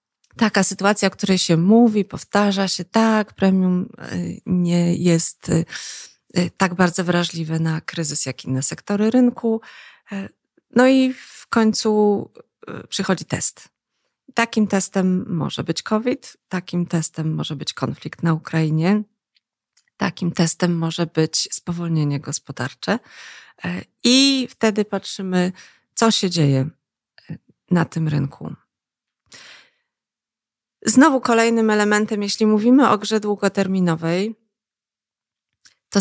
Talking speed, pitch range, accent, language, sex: 105 wpm, 165-210 Hz, native, Polish, female